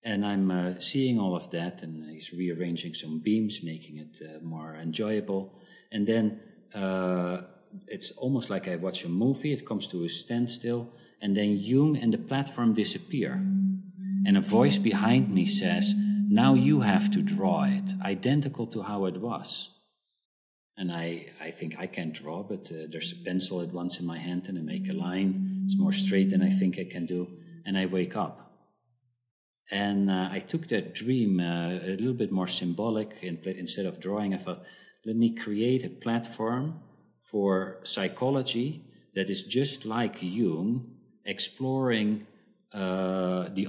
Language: English